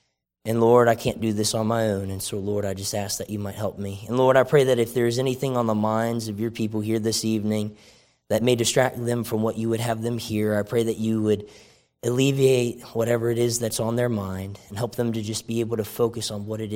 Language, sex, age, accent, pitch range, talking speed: English, male, 20-39, American, 110-145 Hz, 265 wpm